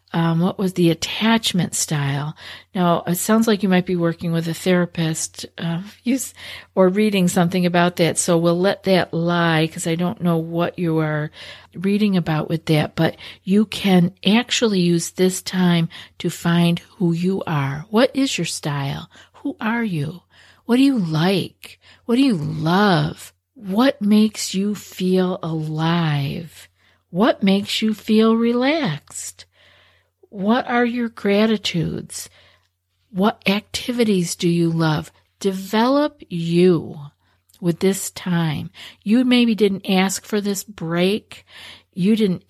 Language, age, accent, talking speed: English, 50-69, American, 140 wpm